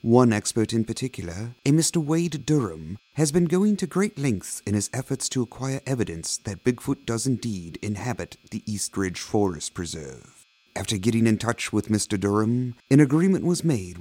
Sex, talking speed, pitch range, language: male, 175 wpm, 105-140 Hz, English